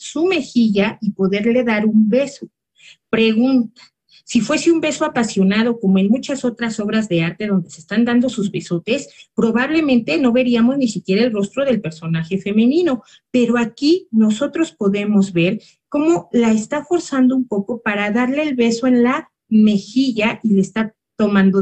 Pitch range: 200-260 Hz